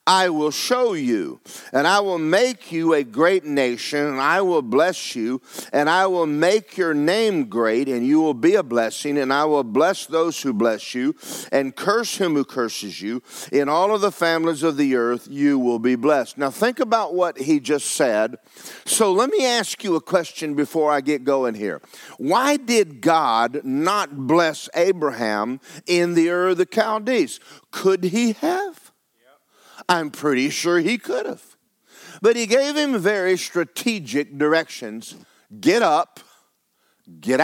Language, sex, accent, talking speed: English, male, American, 170 wpm